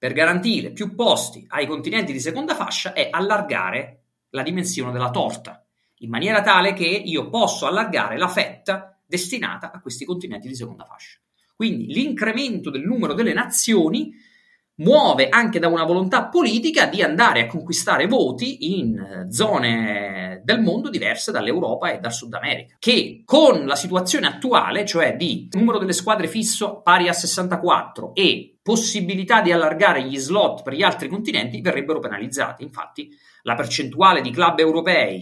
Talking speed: 155 wpm